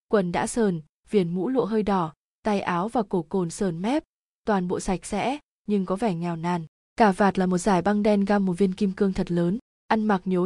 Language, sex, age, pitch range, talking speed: Vietnamese, female, 20-39, 185-225 Hz, 235 wpm